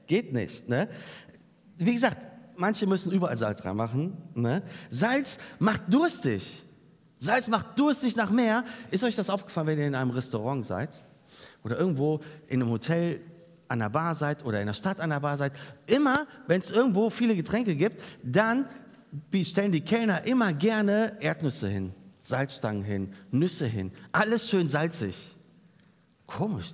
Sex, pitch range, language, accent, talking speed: male, 115-195 Hz, German, German, 155 wpm